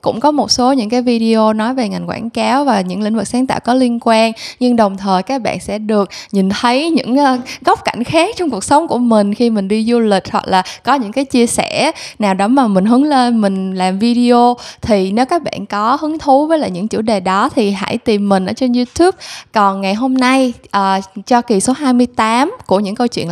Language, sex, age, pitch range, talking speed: Vietnamese, female, 10-29, 195-255 Hz, 240 wpm